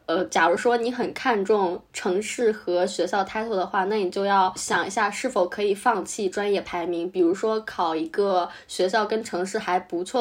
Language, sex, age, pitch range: Chinese, female, 10-29, 185-230 Hz